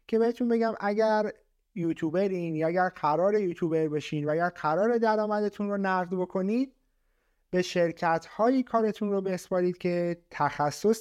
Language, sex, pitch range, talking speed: Persian, male, 165-220 Hz, 135 wpm